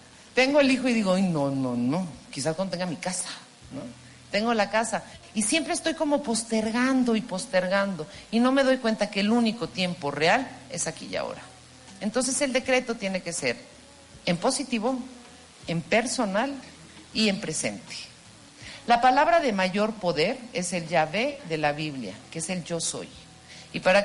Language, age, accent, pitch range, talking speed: Spanish, 50-69, Mexican, 170-260 Hz, 175 wpm